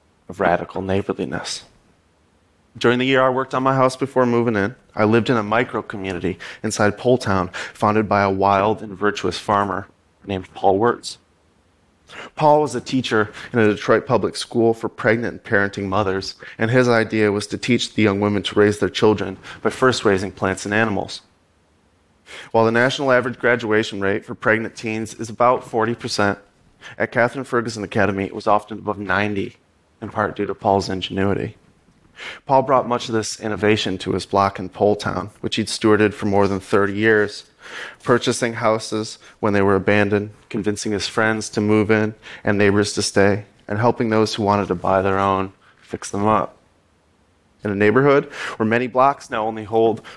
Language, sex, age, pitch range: Korean, male, 30-49, 100-115 Hz